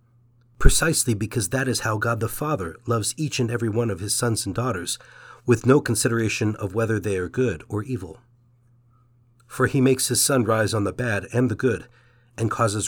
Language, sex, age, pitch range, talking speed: English, male, 40-59, 110-125 Hz, 195 wpm